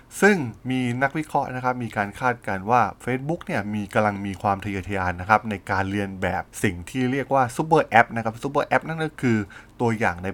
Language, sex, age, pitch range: Thai, male, 20-39, 100-125 Hz